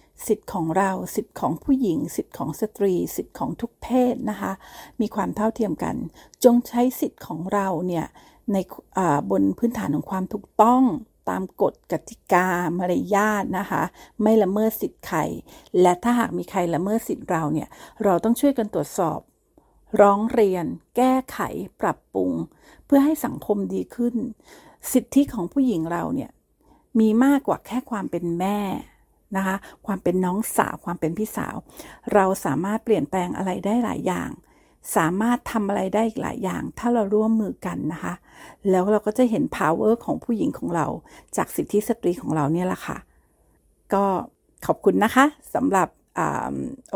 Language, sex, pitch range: Thai, female, 185-235 Hz